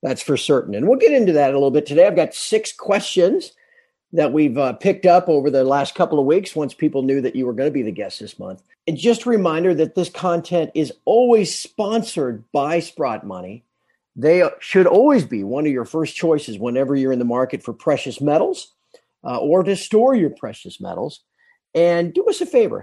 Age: 50-69